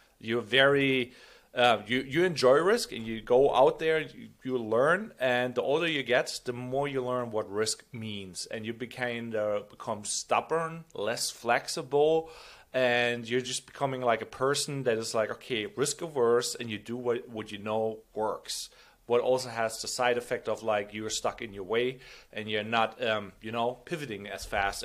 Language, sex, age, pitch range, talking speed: English, male, 40-59, 110-140 Hz, 190 wpm